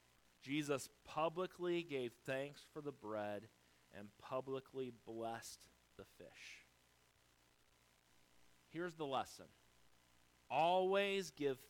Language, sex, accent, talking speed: English, male, American, 85 wpm